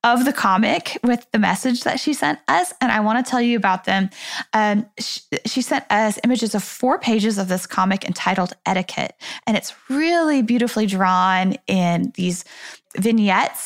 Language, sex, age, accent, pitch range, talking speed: English, female, 10-29, American, 190-245 Hz, 170 wpm